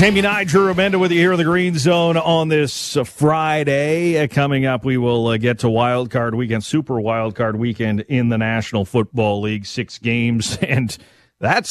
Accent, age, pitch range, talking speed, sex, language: American, 40-59, 110-155 Hz, 190 wpm, male, English